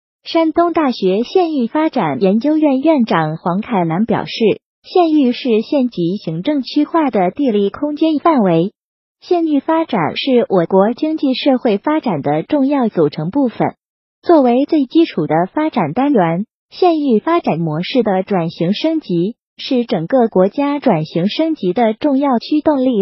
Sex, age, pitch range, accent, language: female, 30-49, 195-305 Hz, native, Chinese